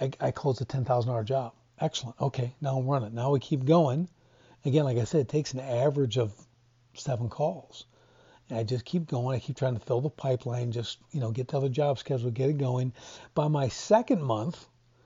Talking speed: 205 wpm